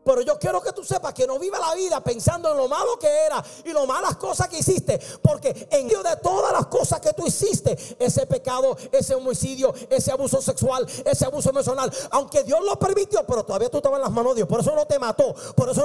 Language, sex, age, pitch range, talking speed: English, male, 40-59, 270-390 Hz, 235 wpm